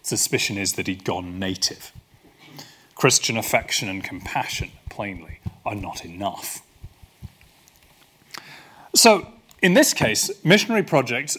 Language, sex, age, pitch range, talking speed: English, male, 30-49, 115-160 Hz, 105 wpm